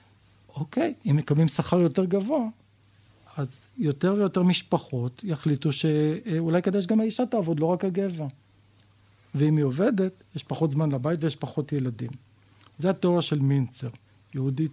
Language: Hebrew